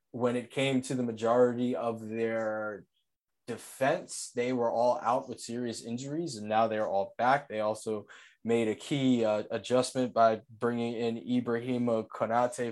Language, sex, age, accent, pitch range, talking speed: English, male, 20-39, American, 110-135 Hz, 155 wpm